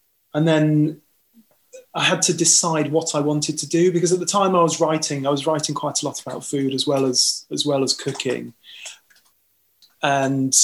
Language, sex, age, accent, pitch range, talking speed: English, male, 20-39, British, 135-160 Hz, 190 wpm